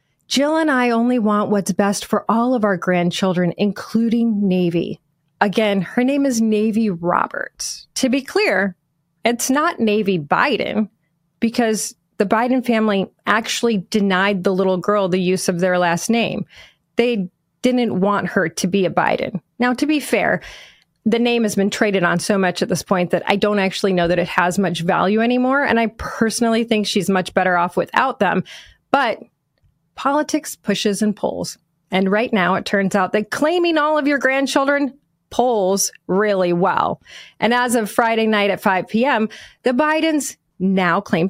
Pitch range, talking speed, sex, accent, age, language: 185-240 Hz, 170 wpm, female, American, 30-49, English